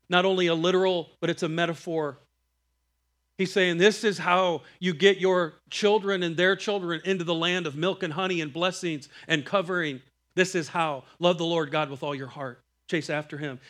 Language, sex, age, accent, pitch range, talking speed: English, male, 40-59, American, 150-205 Hz, 195 wpm